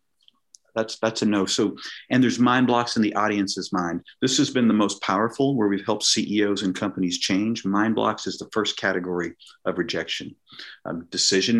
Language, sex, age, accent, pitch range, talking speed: English, male, 40-59, American, 100-125 Hz, 185 wpm